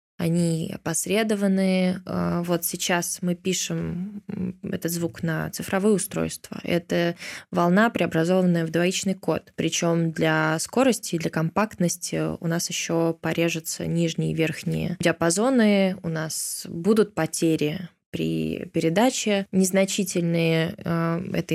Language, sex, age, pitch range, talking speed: Russian, female, 20-39, 165-195 Hz, 110 wpm